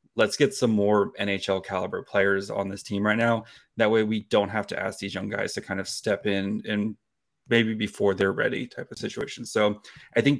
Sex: male